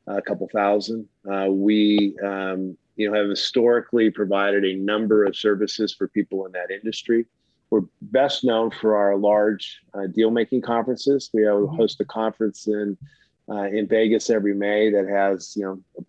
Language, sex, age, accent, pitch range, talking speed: English, male, 30-49, American, 100-115 Hz, 160 wpm